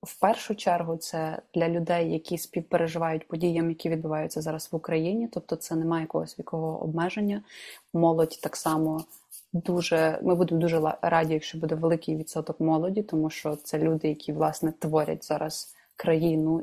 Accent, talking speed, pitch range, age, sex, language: native, 150 wpm, 160-175 Hz, 20-39, female, Ukrainian